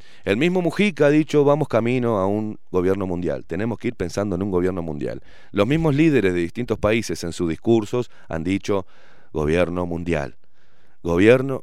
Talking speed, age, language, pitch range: 170 wpm, 30-49, Spanish, 90-140 Hz